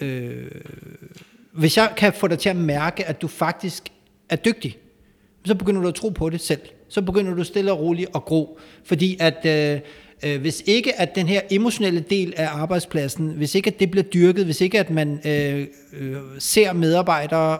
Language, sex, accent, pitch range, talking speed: Danish, male, native, 155-195 Hz, 190 wpm